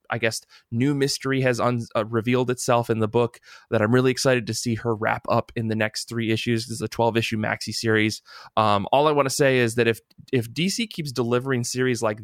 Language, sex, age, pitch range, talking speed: English, male, 20-39, 115-135 Hz, 235 wpm